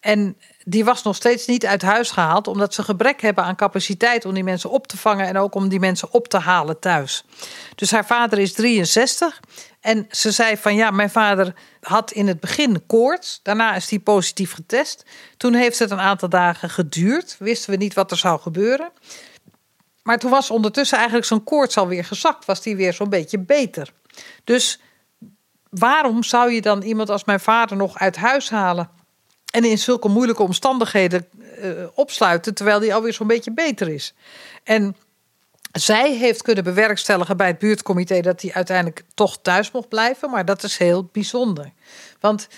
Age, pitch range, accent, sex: 50-69, 190-235 Hz, Dutch, female